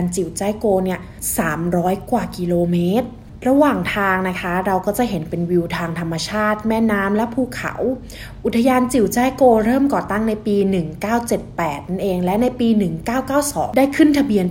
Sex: female